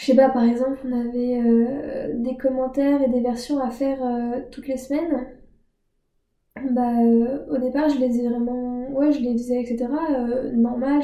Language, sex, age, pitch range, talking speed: French, female, 10-29, 245-295 Hz, 185 wpm